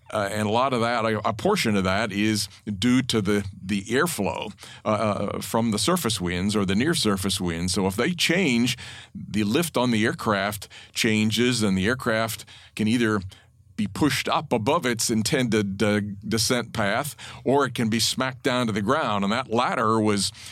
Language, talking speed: English, 185 wpm